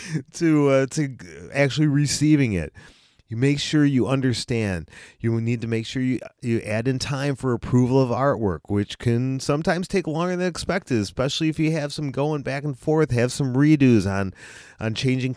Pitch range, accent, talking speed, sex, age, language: 95-135 Hz, American, 185 wpm, male, 30-49, English